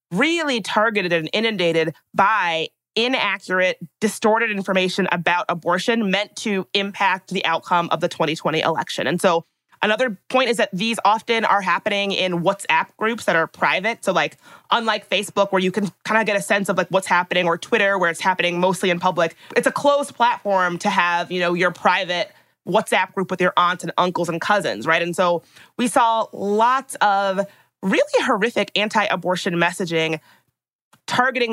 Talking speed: 170 wpm